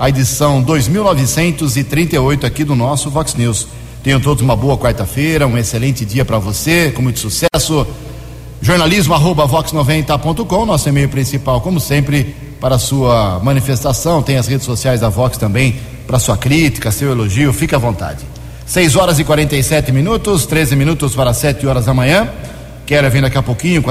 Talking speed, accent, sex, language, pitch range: 175 wpm, Brazilian, male, Portuguese, 120-150 Hz